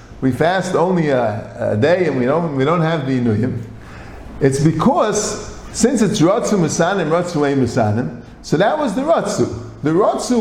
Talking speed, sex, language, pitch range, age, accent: 175 wpm, male, English, 140-205 Hz, 50-69, American